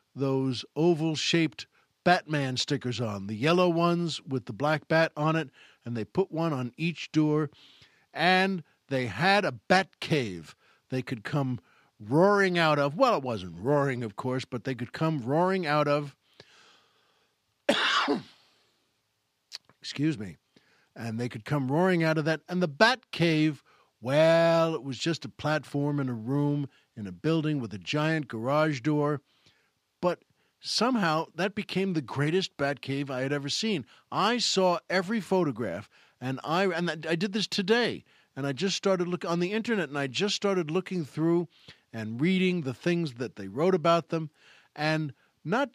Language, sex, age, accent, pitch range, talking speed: English, male, 60-79, American, 130-180 Hz, 165 wpm